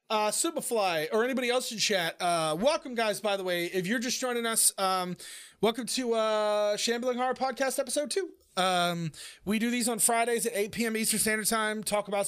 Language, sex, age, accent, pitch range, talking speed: English, male, 30-49, American, 175-230 Hz, 200 wpm